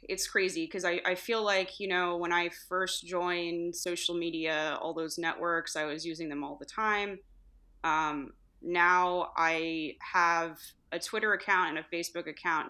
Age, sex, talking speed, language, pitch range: 20-39, female, 170 wpm, English, 155-185 Hz